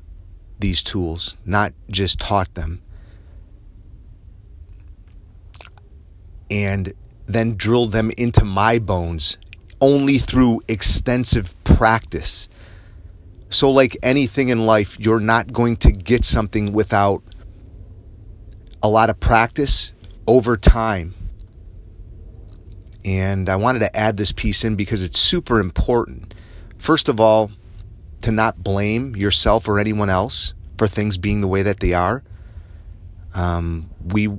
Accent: American